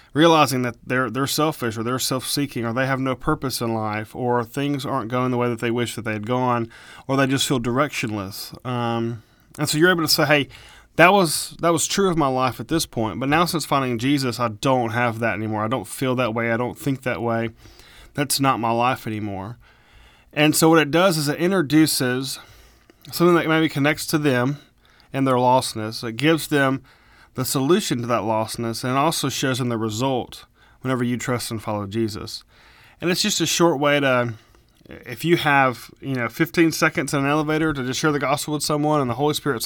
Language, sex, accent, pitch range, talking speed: English, male, American, 115-150 Hz, 215 wpm